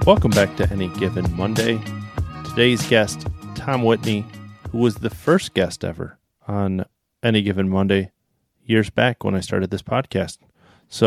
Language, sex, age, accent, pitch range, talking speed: English, male, 30-49, American, 95-110 Hz, 150 wpm